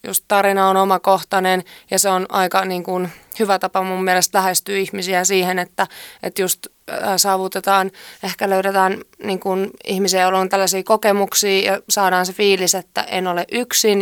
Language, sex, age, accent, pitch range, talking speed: Finnish, female, 20-39, native, 185-205 Hz, 165 wpm